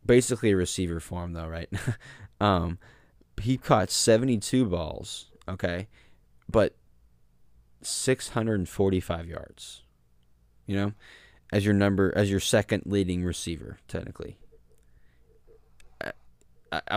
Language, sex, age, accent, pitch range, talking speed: English, male, 20-39, American, 85-100 Hz, 95 wpm